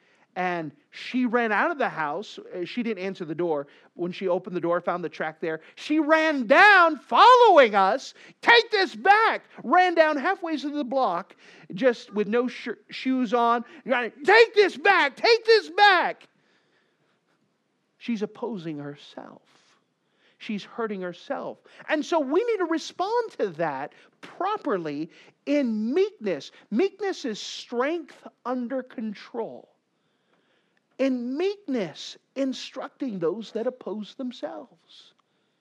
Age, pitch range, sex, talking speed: 40-59, 190-295 Hz, male, 125 wpm